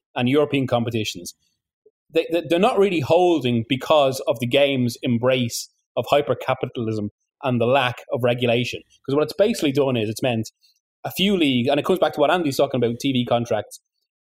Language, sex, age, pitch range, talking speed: English, male, 30-49, 125-155 Hz, 180 wpm